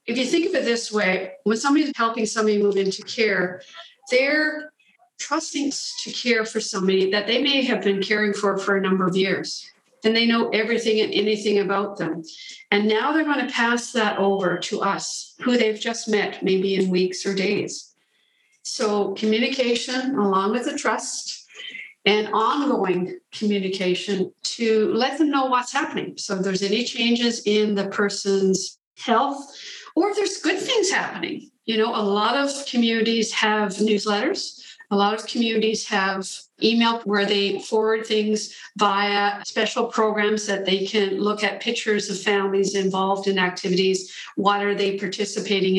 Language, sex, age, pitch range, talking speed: English, female, 50-69, 195-245 Hz, 165 wpm